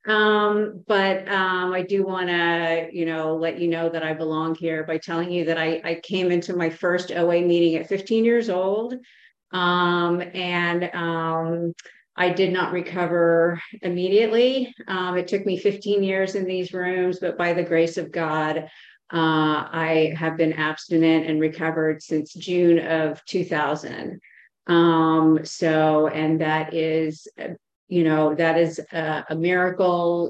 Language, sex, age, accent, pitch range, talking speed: English, female, 40-59, American, 160-180 Hz, 155 wpm